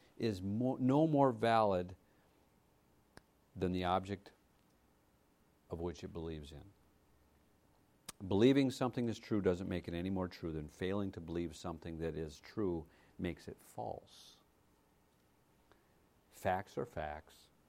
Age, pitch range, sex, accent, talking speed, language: 50-69, 80-110 Hz, male, American, 120 wpm, English